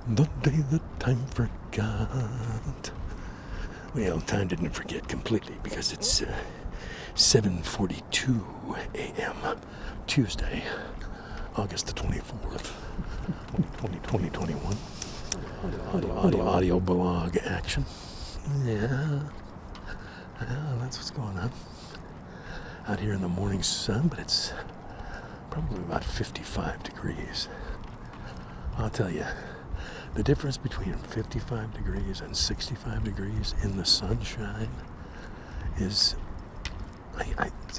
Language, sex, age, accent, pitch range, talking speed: English, male, 60-79, American, 90-125 Hz, 100 wpm